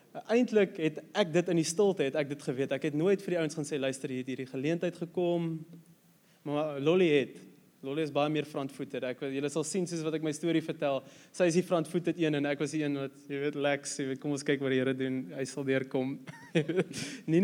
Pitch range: 135-175 Hz